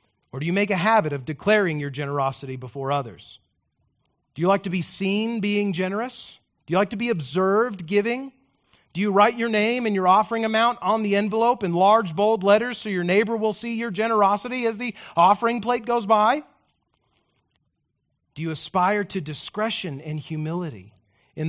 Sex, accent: male, American